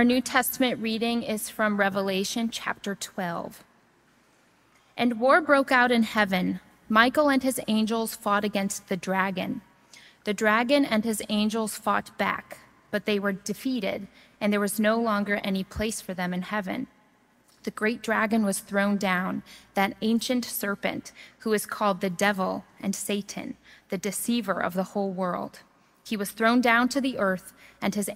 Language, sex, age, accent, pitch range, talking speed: English, female, 20-39, American, 200-235 Hz, 160 wpm